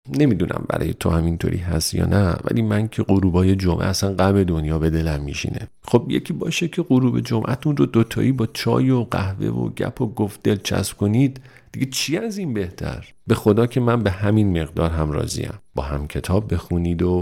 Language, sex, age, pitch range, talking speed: Persian, male, 40-59, 85-115 Hz, 195 wpm